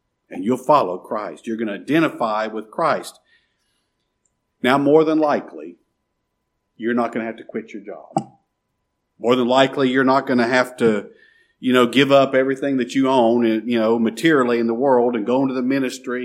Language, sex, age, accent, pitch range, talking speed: English, male, 50-69, American, 115-140 Hz, 190 wpm